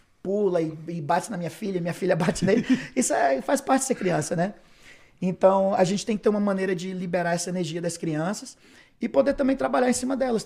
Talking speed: 225 wpm